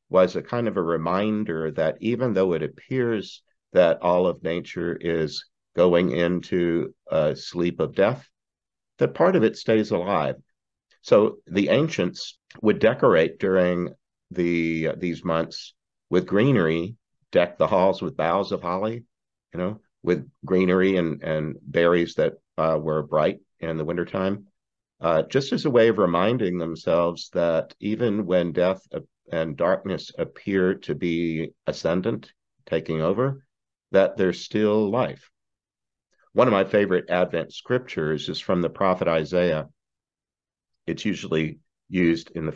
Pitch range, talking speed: 80-100 Hz, 145 wpm